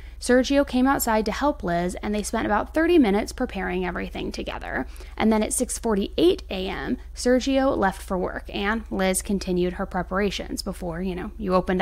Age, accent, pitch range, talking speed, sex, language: 20-39, American, 190-250 Hz, 175 wpm, female, English